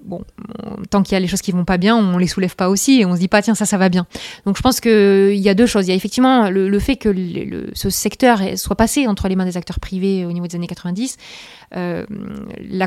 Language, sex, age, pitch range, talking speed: French, female, 20-39, 180-220 Hz, 310 wpm